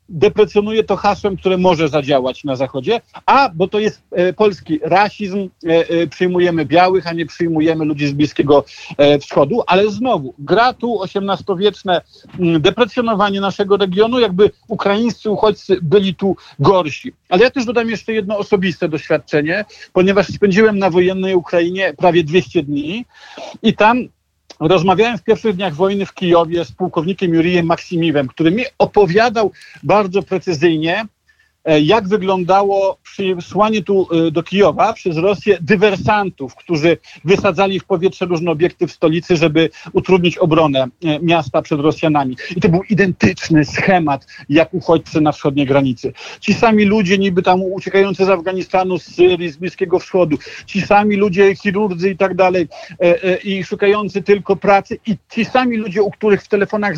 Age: 50-69